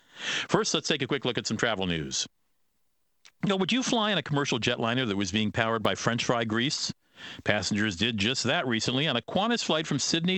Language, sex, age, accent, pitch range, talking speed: English, male, 50-69, American, 110-150 Hz, 215 wpm